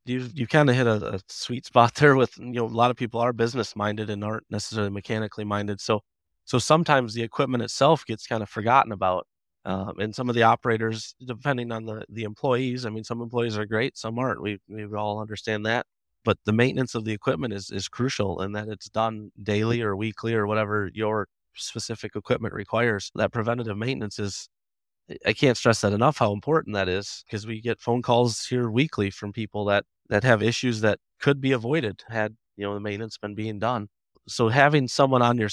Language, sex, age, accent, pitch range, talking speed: English, male, 20-39, American, 105-120 Hz, 210 wpm